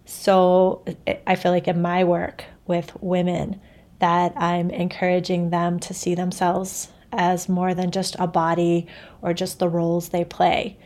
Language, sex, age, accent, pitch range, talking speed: English, female, 30-49, American, 170-185 Hz, 155 wpm